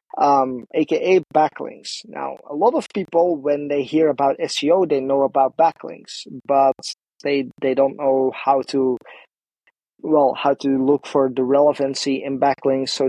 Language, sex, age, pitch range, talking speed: English, male, 30-49, 135-170 Hz, 155 wpm